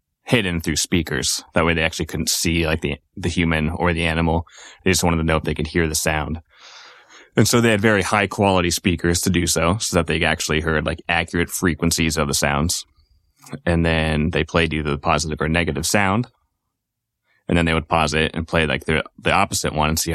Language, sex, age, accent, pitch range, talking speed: English, male, 20-39, American, 80-90 Hz, 220 wpm